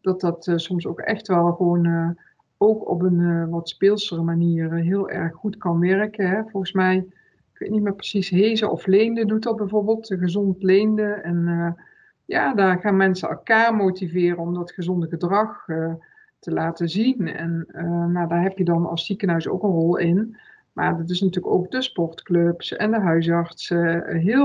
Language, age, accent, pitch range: Dutch, 50-69, Dutch, 170-205 Hz